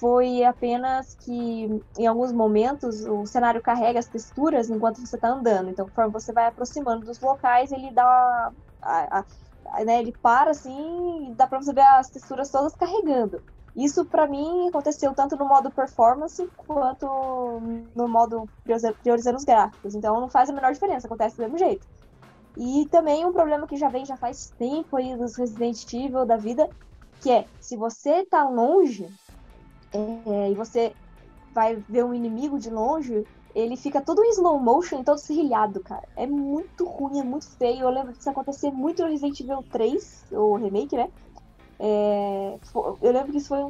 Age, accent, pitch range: 10-29, Brazilian, 230-295 Hz